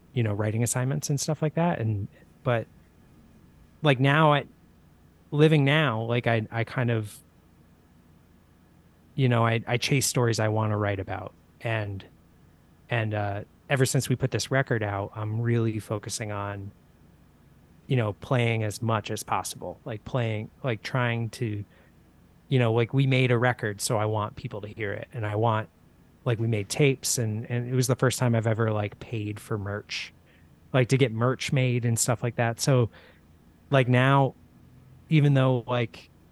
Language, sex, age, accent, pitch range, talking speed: English, male, 30-49, American, 105-135 Hz, 175 wpm